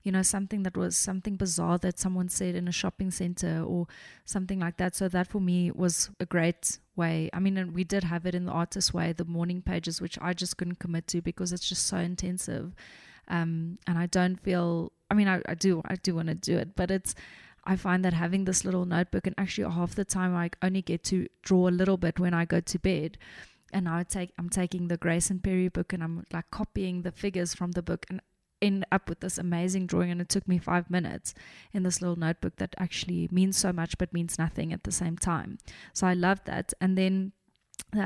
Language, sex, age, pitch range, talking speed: English, female, 20-39, 175-190 Hz, 235 wpm